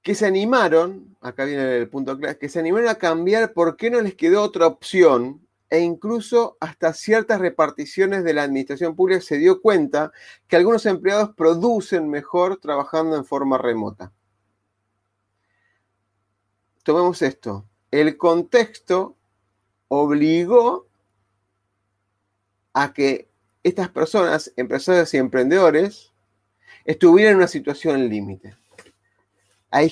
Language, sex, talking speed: Spanish, male, 115 wpm